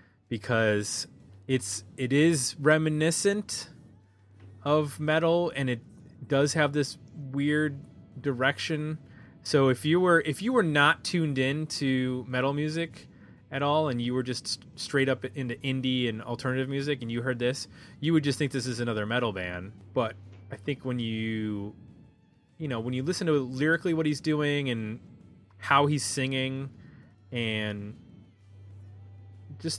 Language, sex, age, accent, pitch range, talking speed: English, male, 20-39, American, 105-145 Hz, 150 wpm